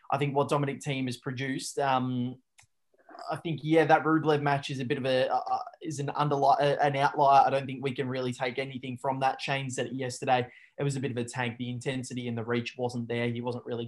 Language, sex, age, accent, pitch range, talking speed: English, male, 20-39, Australian, 125-160 Hz, 240 wpm